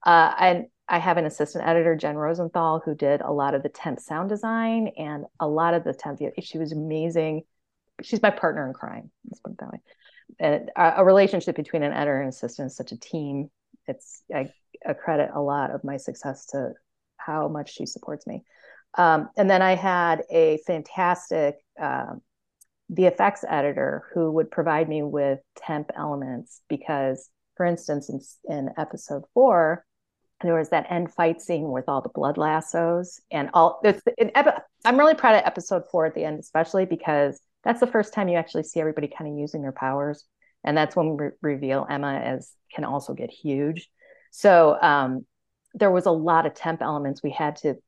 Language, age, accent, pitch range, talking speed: English, 30-49, American, 145-175 Hz, 190 wpm